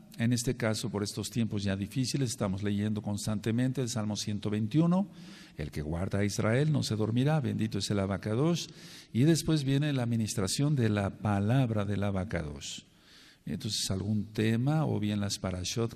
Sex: male